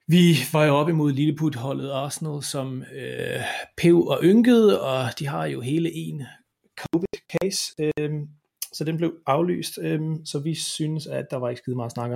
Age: 30-49